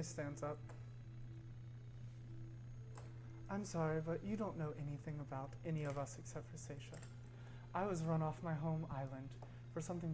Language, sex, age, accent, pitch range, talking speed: English, male, 30-49, American, 120-160 Hz, 150 wpm